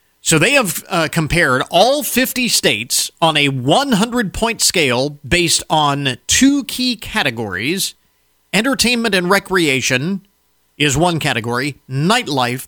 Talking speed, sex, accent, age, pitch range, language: 115 wpm, male, American, 40-59, 125-170 Hz, English